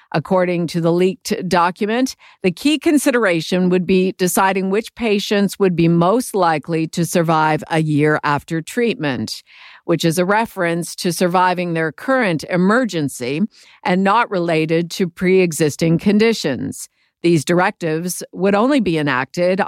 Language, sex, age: English, female, 50-69